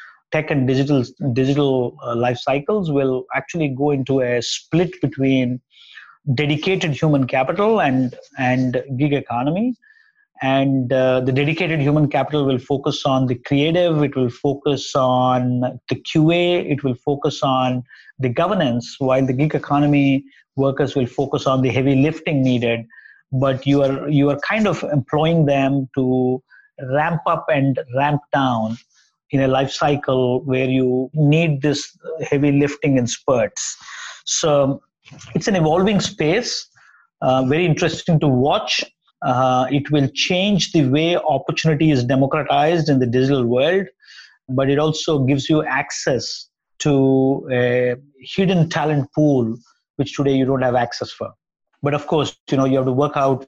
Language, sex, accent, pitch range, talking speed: English, male, Indian, 130-150 Hz, 150 wpm